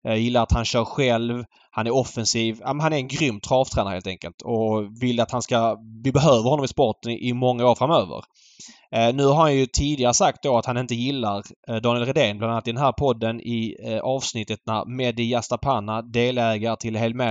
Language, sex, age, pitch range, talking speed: Swedish, male, 20-39, 110-135 Hz, 215 wpm